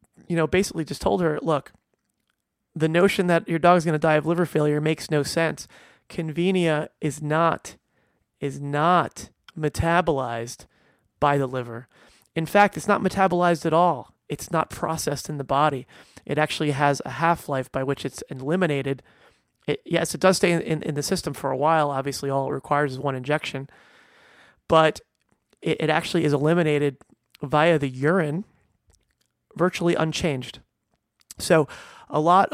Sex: male